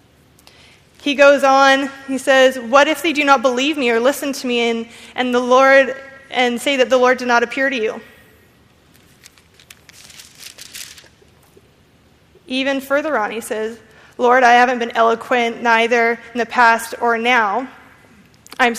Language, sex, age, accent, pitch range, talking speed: English, female, 20-39, American, 230-260 Hz, 150 wpm